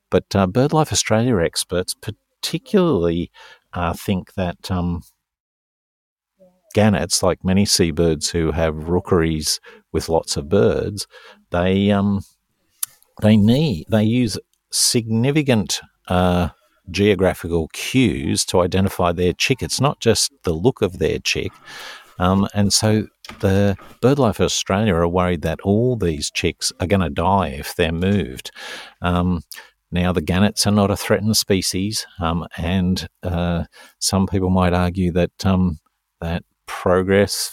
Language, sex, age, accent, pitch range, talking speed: English, male, 50-69, Australian, 85-105 Hz, 130 wpm